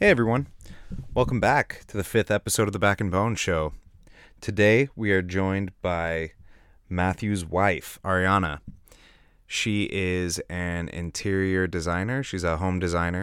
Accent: American